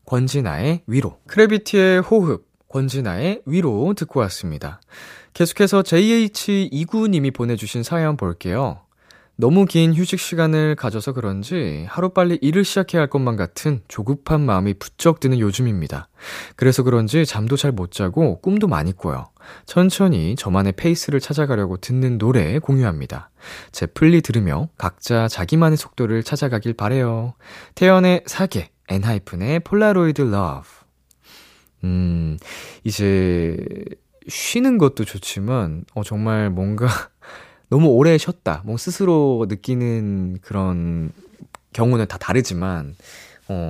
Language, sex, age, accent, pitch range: Korean, male, 20-39, native, 100-155 Hz